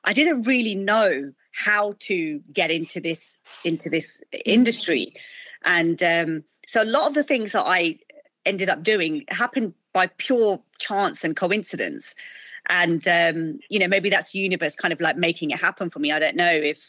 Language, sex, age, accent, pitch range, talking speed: English, female, 40-59, British, 160-210 Hz, 180 wpm